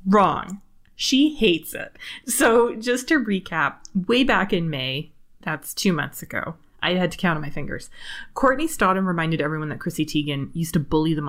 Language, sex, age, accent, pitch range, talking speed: English, female, 20-39, American, 155-195 Hz, 180 wpm